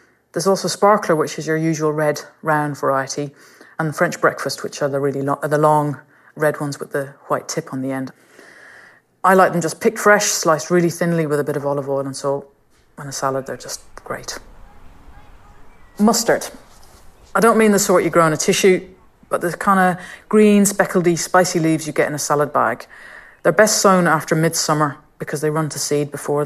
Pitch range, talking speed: 150-185 Hz, 205 wpm